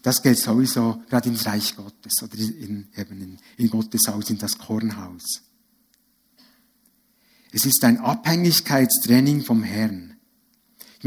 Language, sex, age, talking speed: German, male, 60-79, 130 wpm